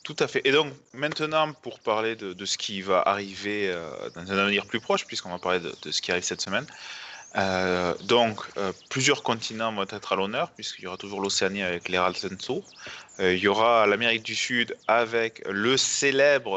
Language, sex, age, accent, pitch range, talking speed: French, male, 20-39, French, 100-130 Hz, 205 wpm